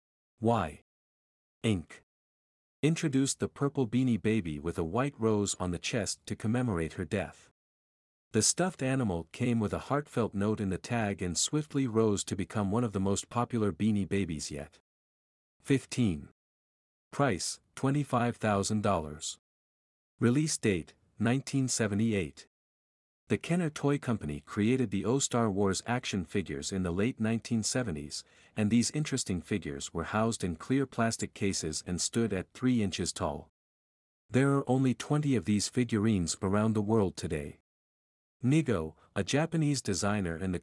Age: 50-69